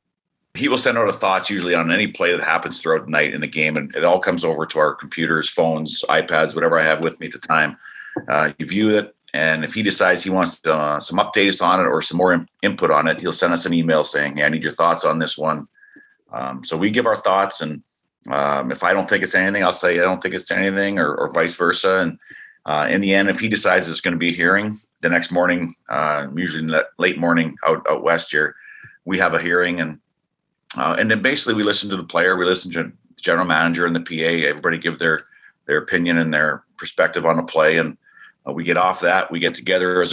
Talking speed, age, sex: 250 wpm, 40-59, male